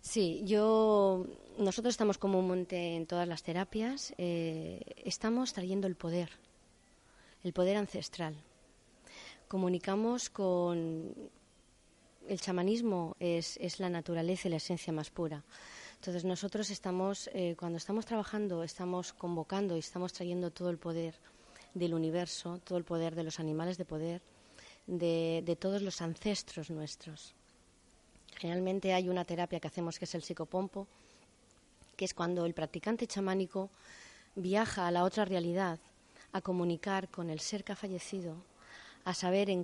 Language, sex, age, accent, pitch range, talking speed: Spanish, female, 20-39, Spanish, 170-195 Hz, 145 wpm